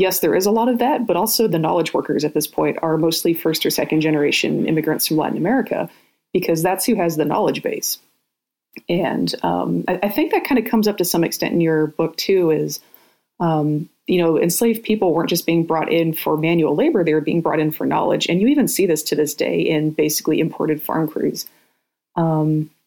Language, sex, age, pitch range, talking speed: English, female, 30-49, 155-185 Hz, 220 wpm